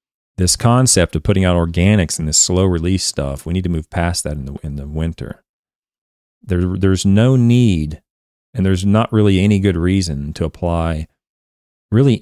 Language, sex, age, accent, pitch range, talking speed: English, male, 40-59, American, 80-100 Hz, 170 wpm